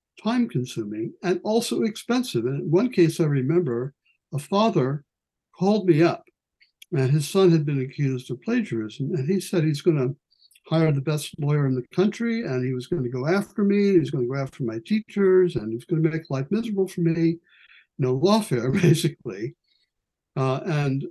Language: English